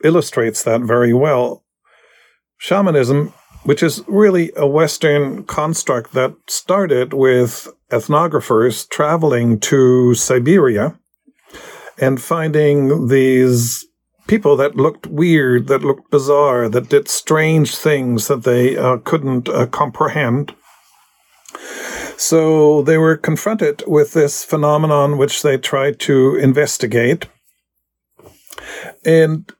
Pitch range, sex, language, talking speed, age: 125-160 Hz, male, English, 105 wpm, 50-69